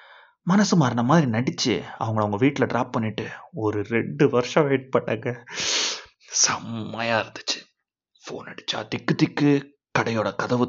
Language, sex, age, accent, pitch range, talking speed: Tamil, male, 30-49, native, 120-170 Hz, 125 wpm